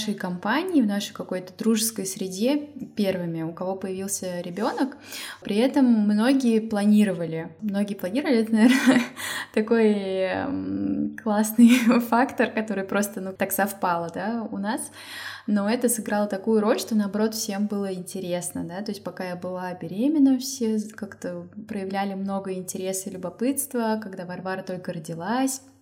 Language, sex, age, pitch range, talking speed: Russian, female, 20-39, 190-235 Hz, 140 wpm